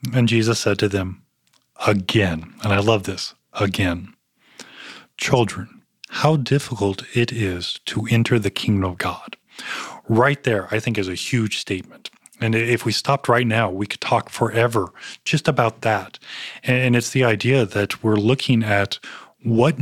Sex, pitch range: male, 100-120 Hz